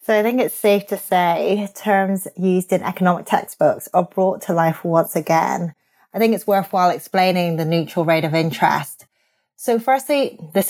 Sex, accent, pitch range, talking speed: female, British, 165-205 Hz, 175 wpm